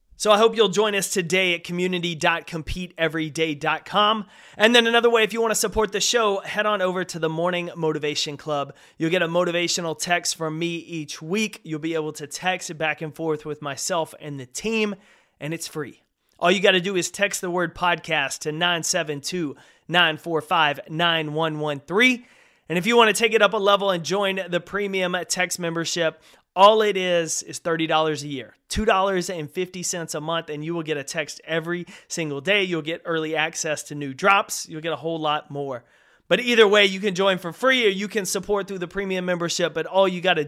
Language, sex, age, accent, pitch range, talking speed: English, male, 30-49, American, 155-195 Hz, 200 wpm